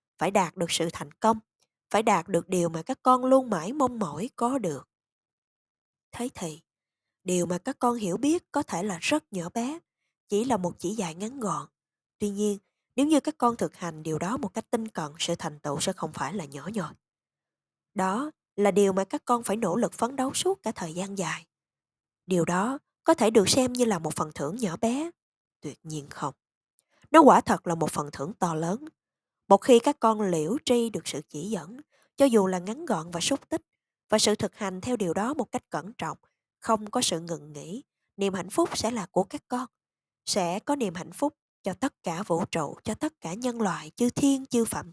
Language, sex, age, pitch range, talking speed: Vietnamese, female, 20-39, 170-245 Hz, 220 wpm